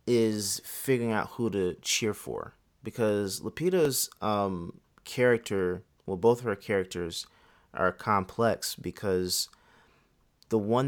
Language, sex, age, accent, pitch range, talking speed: English, male, 30-49, American, 90-110 Hz, 115 wpm